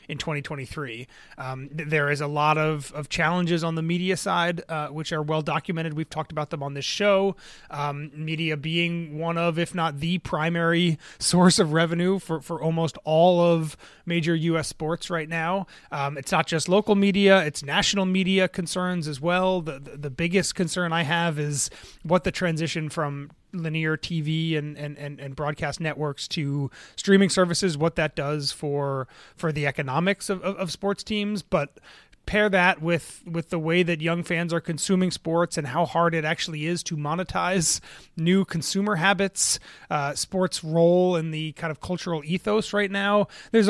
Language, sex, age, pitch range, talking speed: English, male, 30-49, 150-180 Hz, 180 wpm